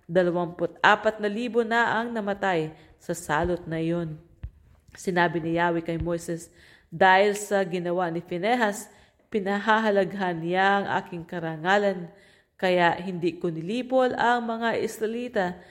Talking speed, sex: 120 wpm, female